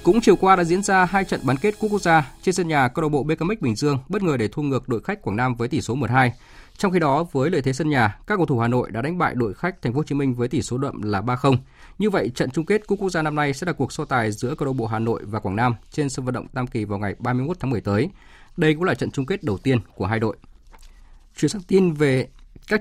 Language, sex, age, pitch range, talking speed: Vietnamese, male, 20-39, 115-160 Hz, 305 wpm